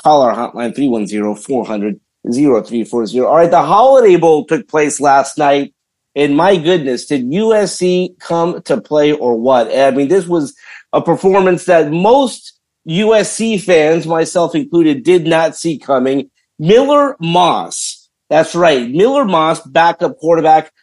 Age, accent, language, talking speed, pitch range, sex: 50-69, American, English, 135 wpm, 145-200 Hz, male